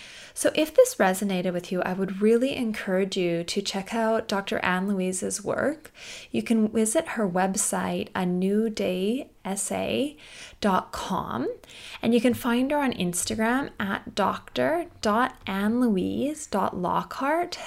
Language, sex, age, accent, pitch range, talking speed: English, female, 20-39, American, 180-230 Hz, 110 wpm